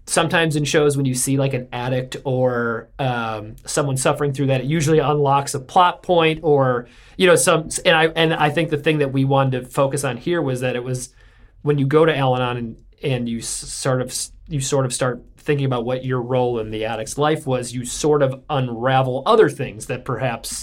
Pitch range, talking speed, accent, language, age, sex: 120-145 Hz, 220 wpm, American, English, 40-59, male